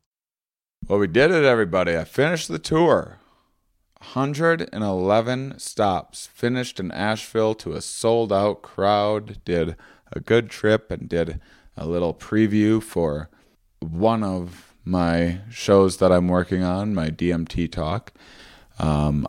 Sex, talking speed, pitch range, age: male, 130 wpm, 80-100 Hz, 30-49